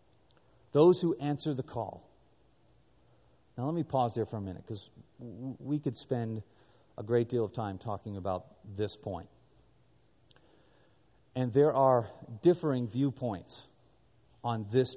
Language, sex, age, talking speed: English, male, 40-59, 130 wpm